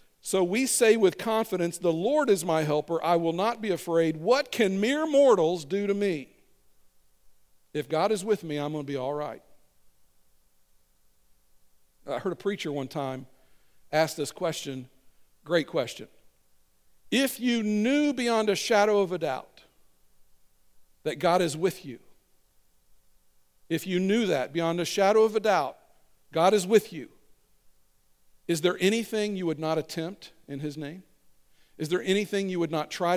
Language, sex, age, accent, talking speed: English, male, 50-69, American, 160 wpm